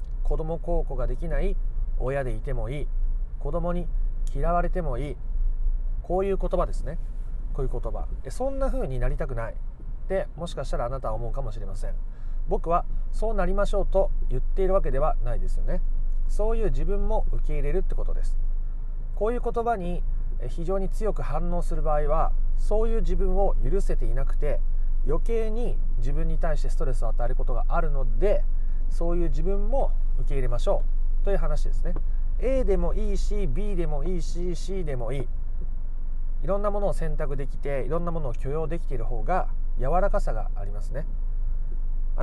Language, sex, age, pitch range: Japanese, male, 30-49, 125-180 Hz